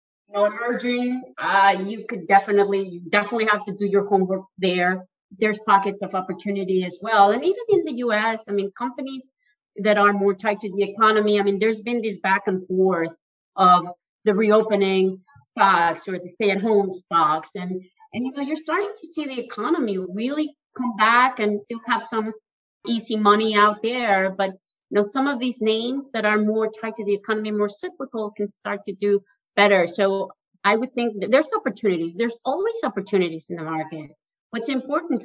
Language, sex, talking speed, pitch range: English, female, 185 wpm, 190-230 Hz